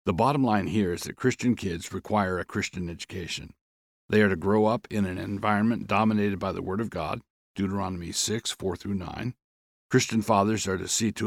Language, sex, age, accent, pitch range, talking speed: English, male, 60-79, American, 95-110 Hz, 195 wpm